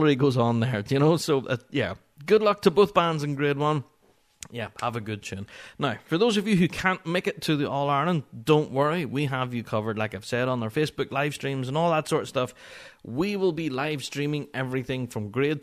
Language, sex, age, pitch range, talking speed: English, male, 30-49, 115-150 Hz, 240 wpm